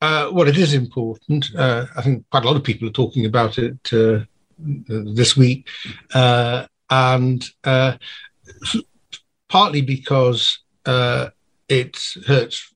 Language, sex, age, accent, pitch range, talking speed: English, male, 50-69, British, 115-140 Hz, 130 wpm